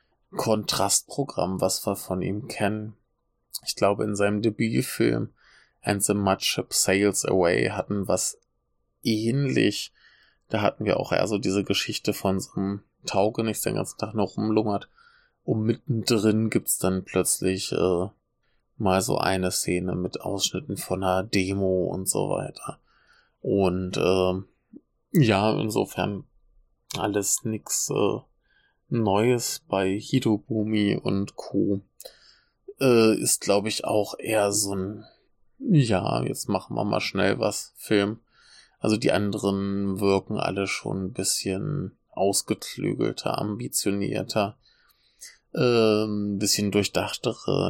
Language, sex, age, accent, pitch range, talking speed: German, male, 20-39, German, 95-110 Hz, 120 wpm